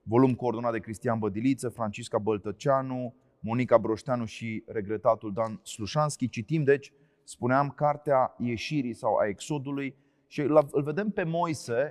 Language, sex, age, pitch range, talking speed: Romanian, male, 30-49, 120-150 Hz, 130 wpm